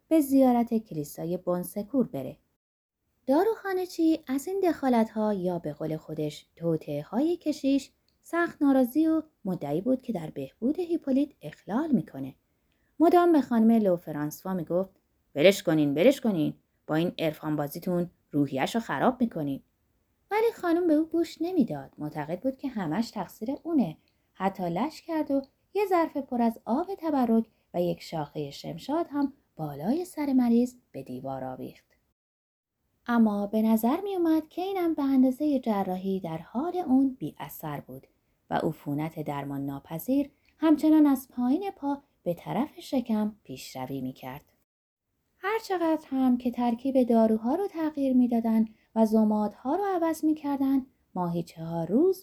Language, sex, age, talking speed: Persian, female, 20-39, 140 wpm